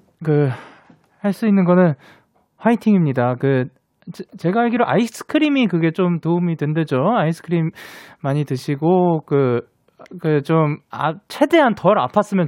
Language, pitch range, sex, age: Korean, 135-195 Hz, male, 20-39